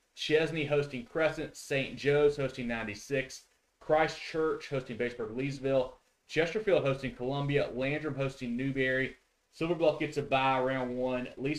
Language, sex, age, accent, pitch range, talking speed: English, male, 30-49, American, 125-150 Hz, 125 wpm